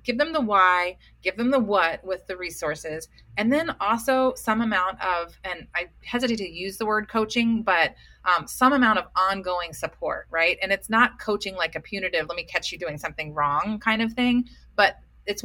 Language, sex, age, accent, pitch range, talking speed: English, female, 30-49, American, 180-230 Hz, 200 wpm